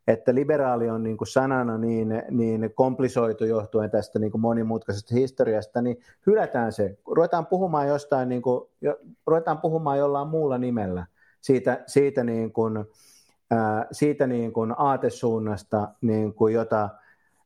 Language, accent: Finnish, native